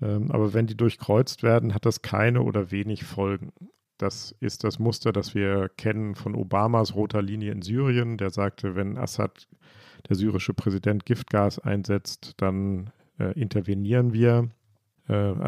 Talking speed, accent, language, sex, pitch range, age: 145 wpm, German, German, male, 105-120 Hz, 50-69